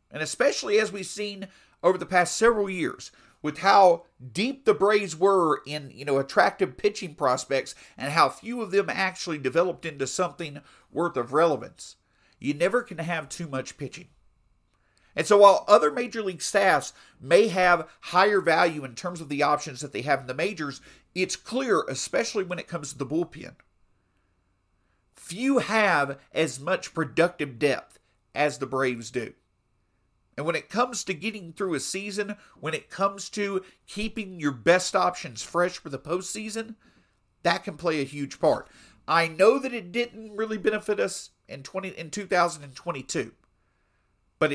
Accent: American